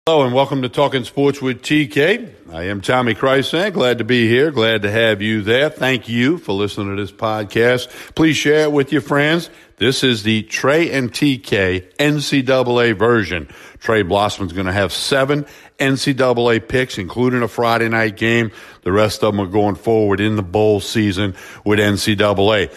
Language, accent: English, American